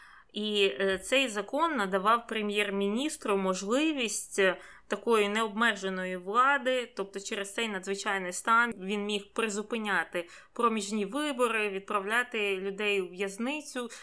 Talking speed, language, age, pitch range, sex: 100 wpm, Ukrainian, 20-39, 195-240 Hz, female